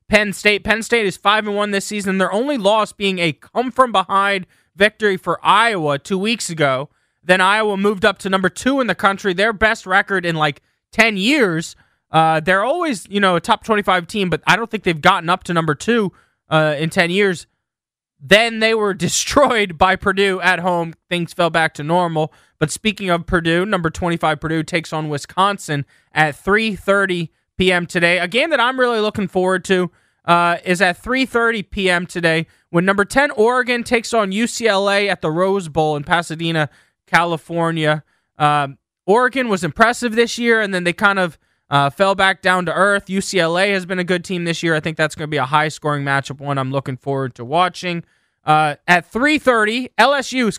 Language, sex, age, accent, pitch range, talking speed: English, male, 20-39, American, 165-210 Hz, 195 wpm